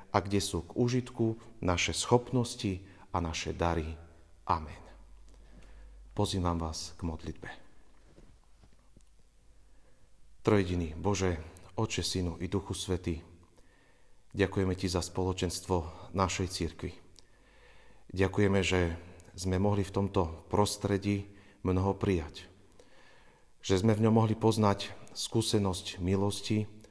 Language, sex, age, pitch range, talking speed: Slovak, male, 40-59, 90-105 Hz, 100 wpm